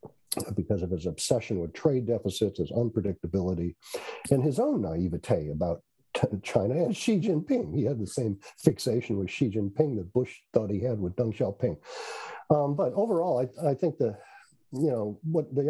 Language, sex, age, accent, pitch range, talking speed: English, male, 50-69, American, 100-135 Hz, 170 wpm